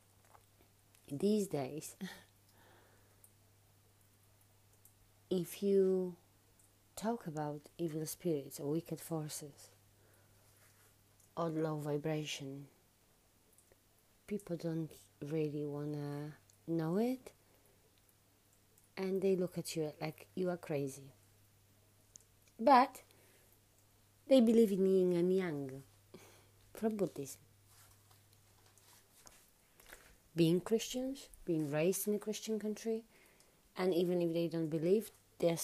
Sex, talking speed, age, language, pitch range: female, 90 wpm, 30-49, English, 105-170 Hz